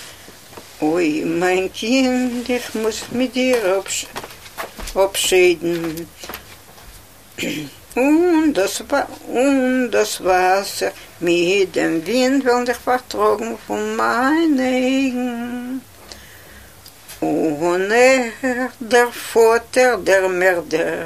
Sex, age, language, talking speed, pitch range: female, 60-79, Russian, 45 wpm, 185-275 Hz